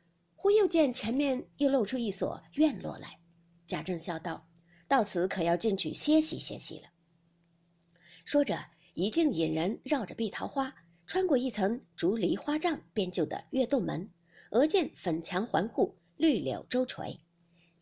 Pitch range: 170-285 Hz